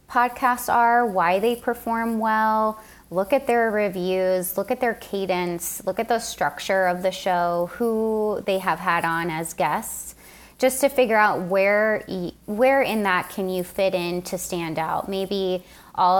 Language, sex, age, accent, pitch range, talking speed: English, female, 30-49, American, 175-210 Hz, 165 wpm